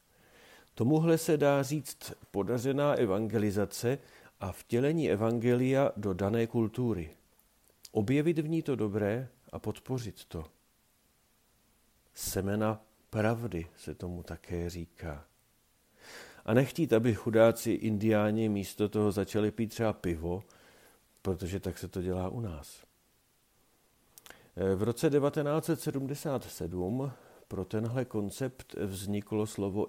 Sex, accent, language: male, native, Czech